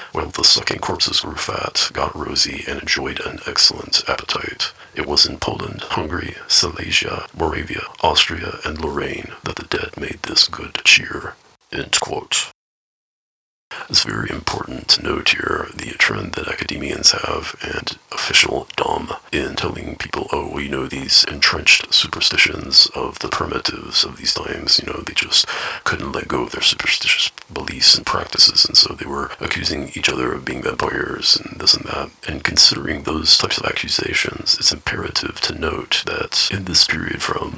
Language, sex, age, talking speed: English, male, 40-59, 165 wpm